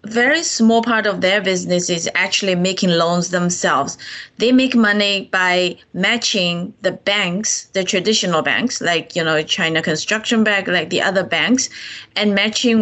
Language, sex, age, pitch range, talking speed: English, female, 20-39, 180-225 Hz, 155 wpm